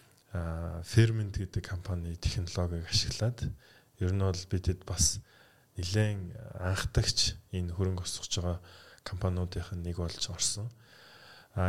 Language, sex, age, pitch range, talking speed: English, male, 20-39, 90-105 Hz, 115 wpm